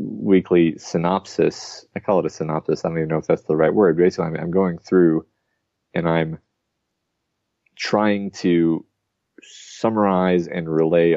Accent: American